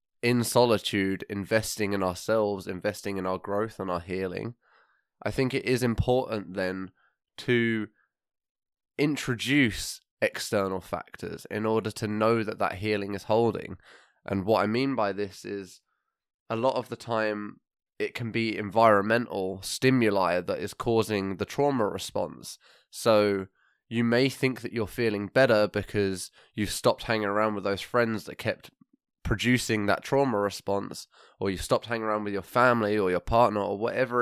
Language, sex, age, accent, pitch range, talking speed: English, male, 10-29, British, 100-120 Hz, 155 wpm